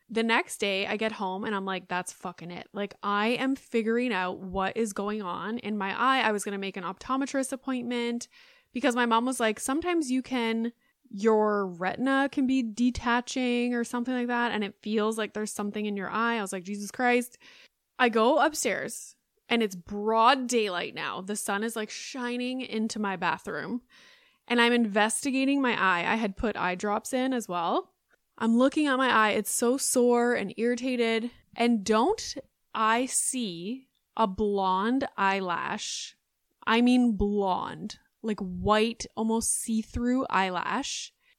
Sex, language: female, English